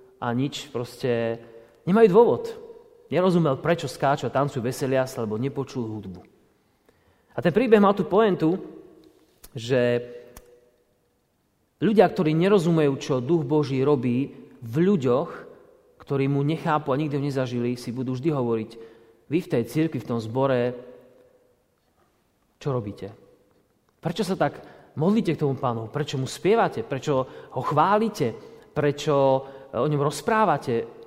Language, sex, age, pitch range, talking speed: Slovak, male, 30-49, 130-190 Hz, 125 wpm